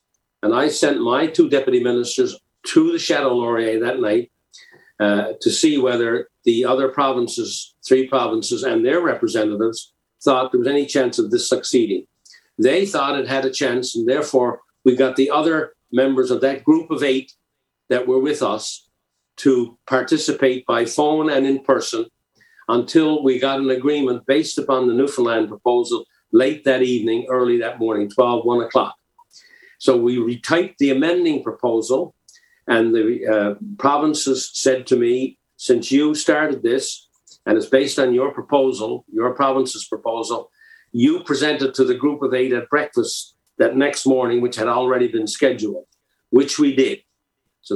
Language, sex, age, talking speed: English, male, 50-69, 160 wpm